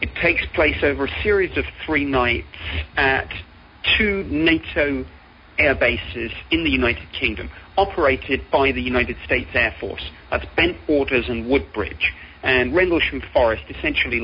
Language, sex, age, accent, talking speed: English, male, 40-59, British, 140 wpm